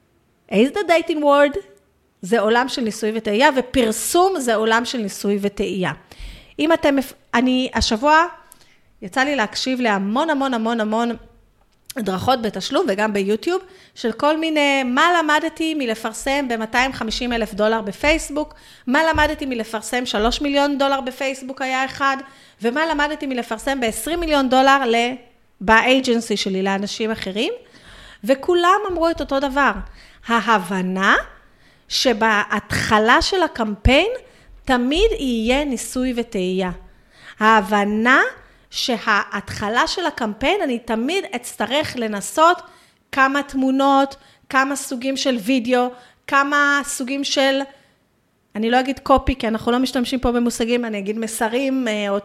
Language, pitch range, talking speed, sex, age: Hebrew, 225-285 Hz, 120 wpm, female, 30-49